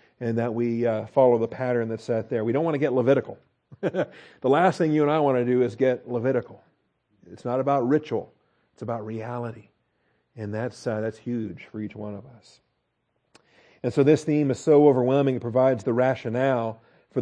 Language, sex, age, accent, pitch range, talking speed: English, male, 40-59, American, 120-140 Hz, 200 wpm